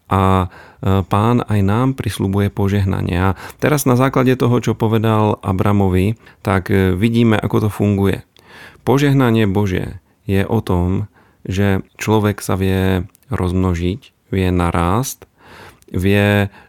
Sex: male